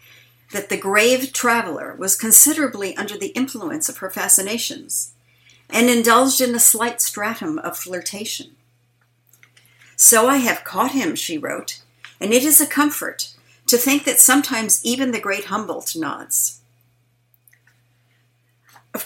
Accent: American